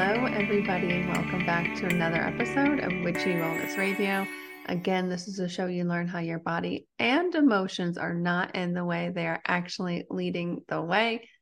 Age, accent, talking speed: 30-49, American, 185 wpm